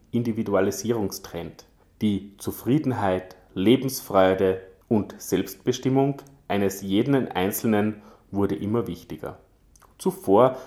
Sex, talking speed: male, 75 wpm